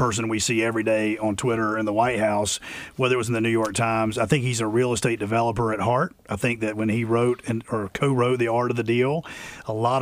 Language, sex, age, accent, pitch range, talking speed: English, male, 40-59, American, 115-140 Hz, 265 wpm